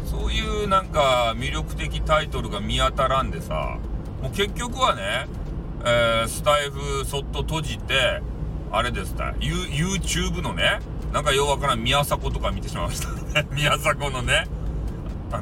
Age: 40-59